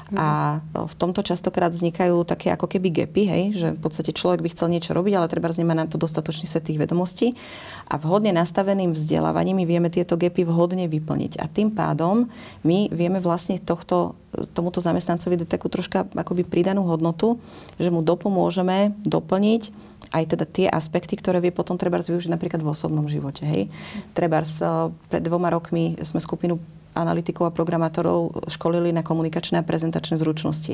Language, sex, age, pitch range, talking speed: Slovak, female, 30-49, 165-180 Hz, 160 wpm